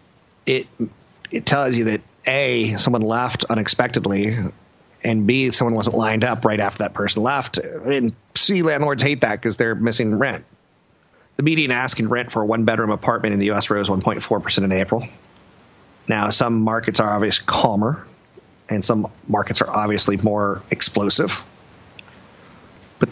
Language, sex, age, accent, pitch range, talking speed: English, male, 40-59, American, 105-125 Hz, 150 wpm